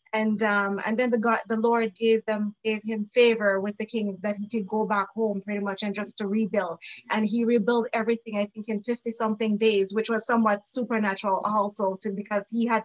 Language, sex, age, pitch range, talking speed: English, female, 20-39, 215-240 Hz, 220 wpm